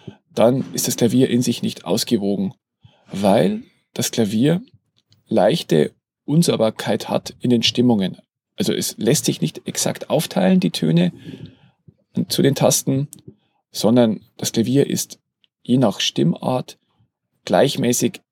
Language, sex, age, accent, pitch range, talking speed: German, male, 40-59, German, 115-145 Hz, 120 wpm